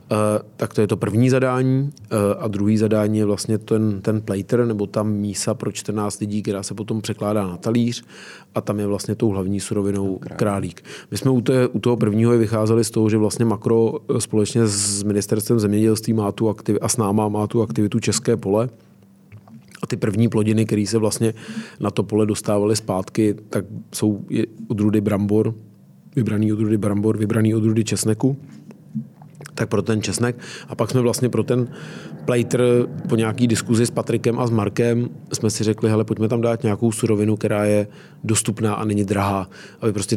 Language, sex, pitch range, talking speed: Czech, male, 105-115 Hz, 180 wpm